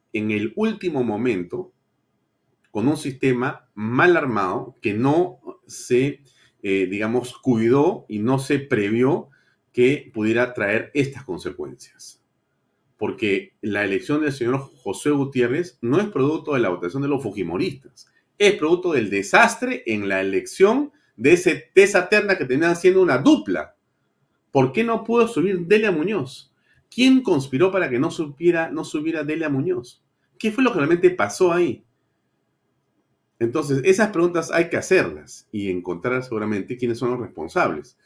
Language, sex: Spanish, male